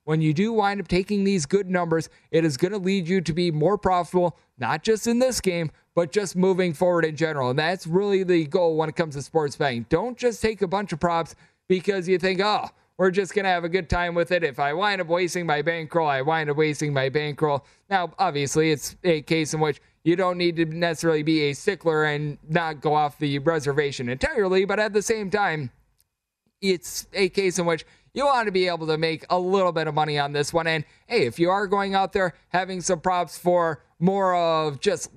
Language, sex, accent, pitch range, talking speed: English, male, American, 155-190 Hz, 230 wpm